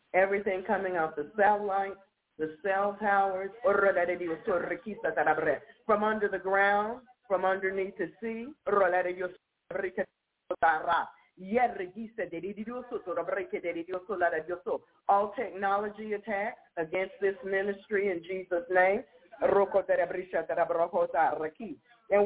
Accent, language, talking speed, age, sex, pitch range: American, English, 75 wpm, 40-59, female, 175-210 Hz